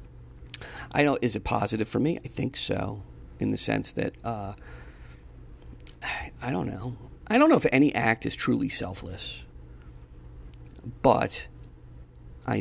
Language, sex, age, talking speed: English, male, 40-59, 145 wpm